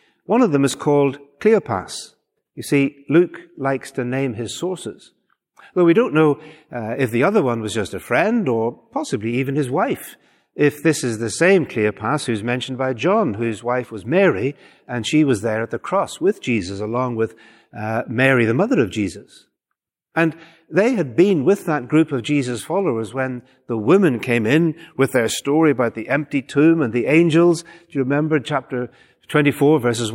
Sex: male